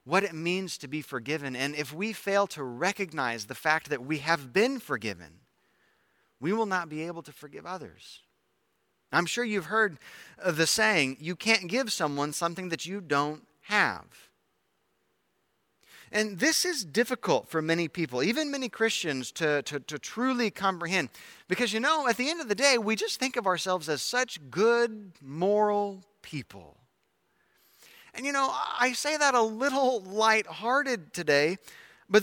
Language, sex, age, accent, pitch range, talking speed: English, male, 30-49, American, 155-225 Hz, 160 wpm